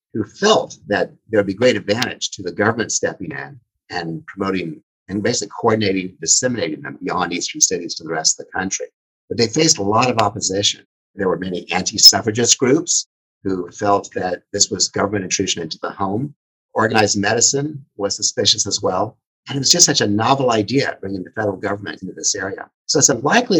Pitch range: 100-140 Hz